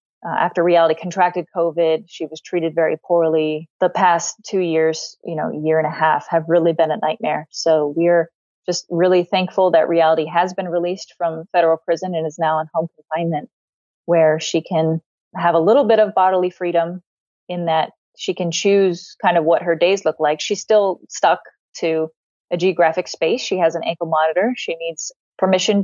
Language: English